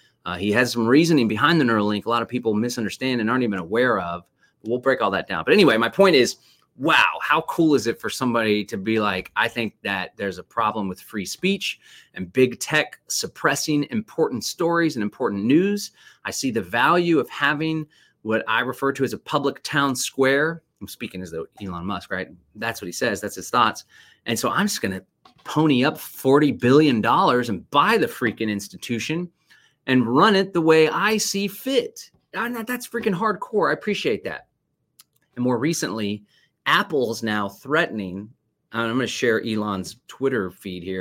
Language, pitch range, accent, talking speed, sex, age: English, 100-150 Hz, American, 185 wpm, male, 30-49